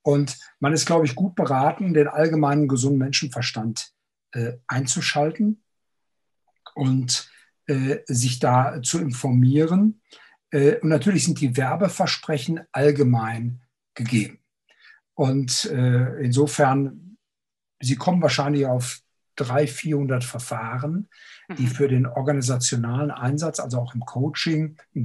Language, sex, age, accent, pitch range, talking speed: German, male, 60-79, German, 125-150 Hz, 115 wpm